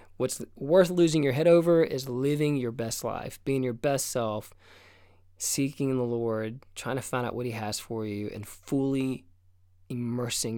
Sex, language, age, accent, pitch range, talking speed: male, English, 20-39, American, 105-150 Hz, 170 wpm